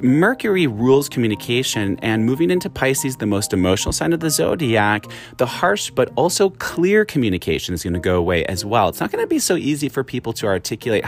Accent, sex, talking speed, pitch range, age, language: American, male, 195 wpm, 105-150 Hz, 30-49, English